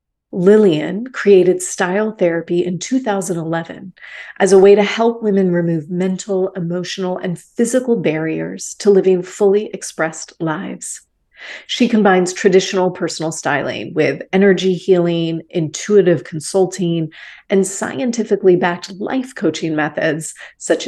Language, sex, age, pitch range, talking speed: English, female, 30-49, 170-200 Hz, 110 wpm